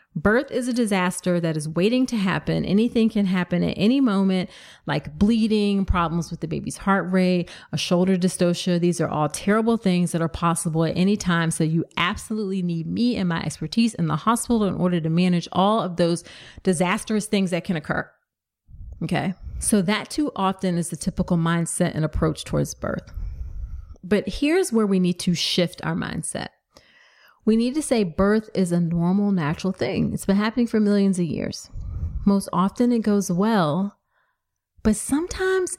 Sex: female